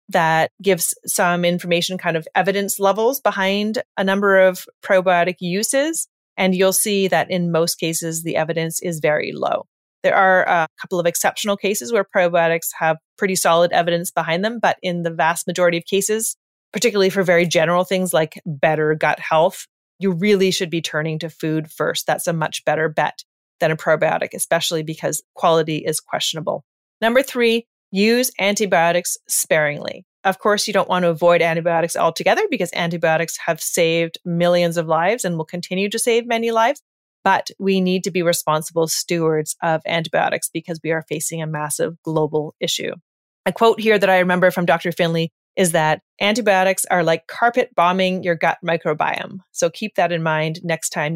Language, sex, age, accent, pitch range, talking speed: English, female, 30-49, American, 160-195 Hz, 175 wpm